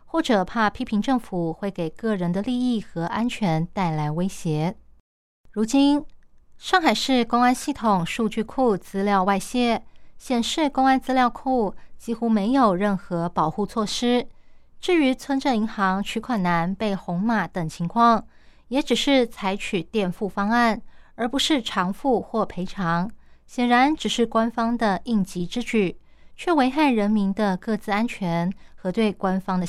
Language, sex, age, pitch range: Chinese, female, 20-39, 190-245 Hz